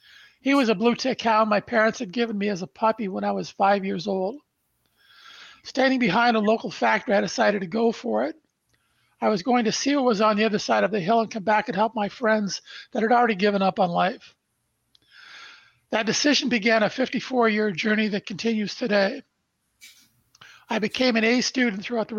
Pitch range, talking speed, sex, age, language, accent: 200-235 Hz, 205 wpm, male, 50-69, English, American